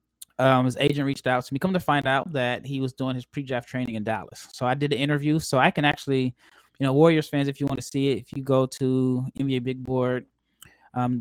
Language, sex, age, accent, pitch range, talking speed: English, male, 20-39, American, 130-155 Hz, 250 wpm